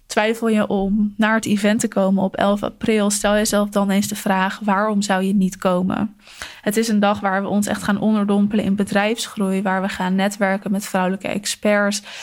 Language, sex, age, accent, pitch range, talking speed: Dutch, female, 20-39, Dutch, 185-210 Hz, 200 wpm